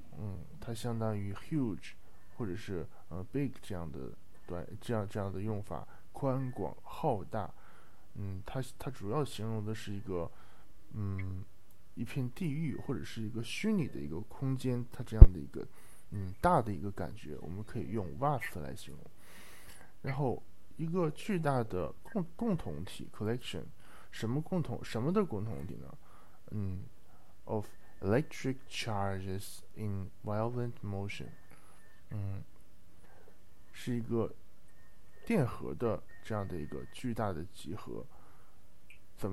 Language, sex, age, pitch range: Japanese, male, 20-39, 95-125 Hz